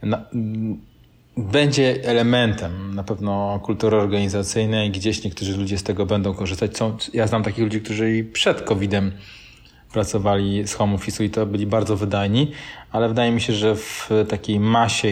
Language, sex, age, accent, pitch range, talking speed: Polish, male, 30-49, native, 100-115 Hz, 160 wpm